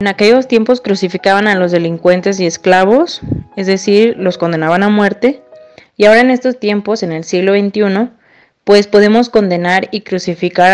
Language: Spanish